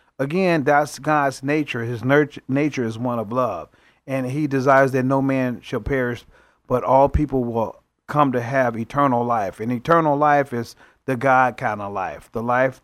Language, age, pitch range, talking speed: English, 40-59, 120-140 Hz, 180 wpm